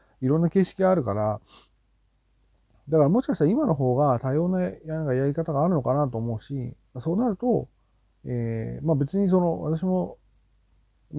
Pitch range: 110-160 Hz